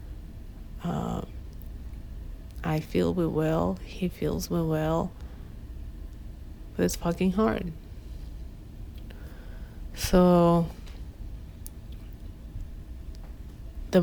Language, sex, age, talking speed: English, female, 30-49, 65 wpm